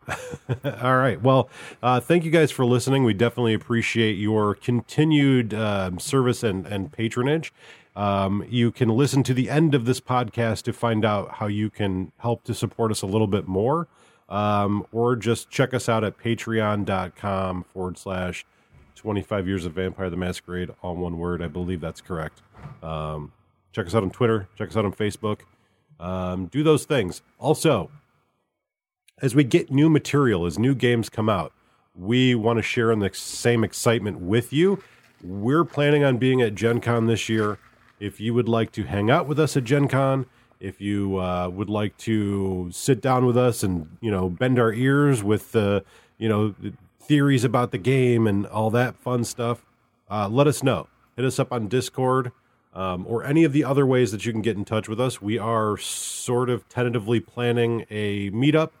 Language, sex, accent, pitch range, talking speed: English, male, American, 100-125 Hz, 190 wpm